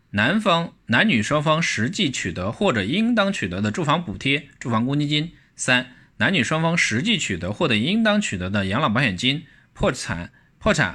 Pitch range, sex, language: 105-155 Hz, male, Chinese